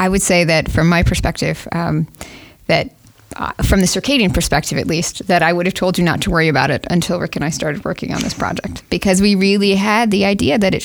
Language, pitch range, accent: English, 170-195 Hz, American